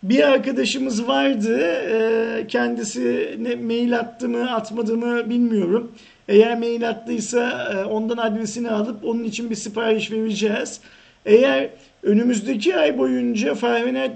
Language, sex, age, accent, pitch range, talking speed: Turkish, male, 50-69, native, 215-255 Hz, 110 wpm